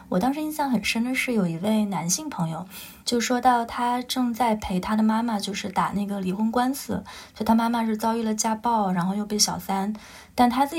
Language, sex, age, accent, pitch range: Chinese, female, 20-39, native, 200-240 Hz